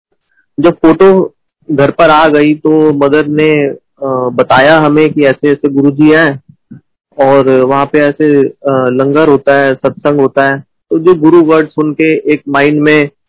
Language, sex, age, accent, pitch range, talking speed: Hindi, male, 30-49, native, 140-165 Hz, 155 wpm